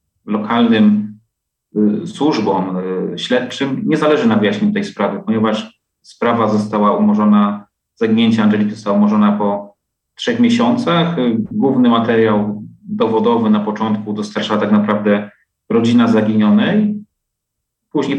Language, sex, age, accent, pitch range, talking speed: Polish, male, 30-49, native, 110-170 Hz, 110 wpm